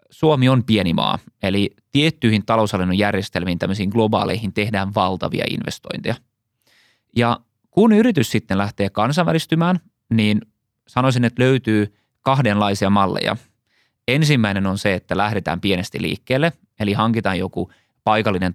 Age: 20-39